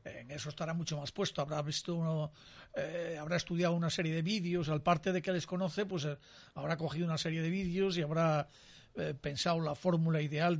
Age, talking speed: 50-69, 210 wpm